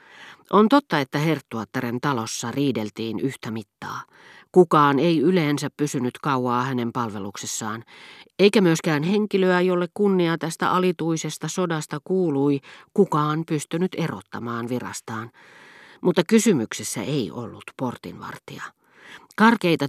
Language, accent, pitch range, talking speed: Finnish, native, 120-165 Hz, 105 wpm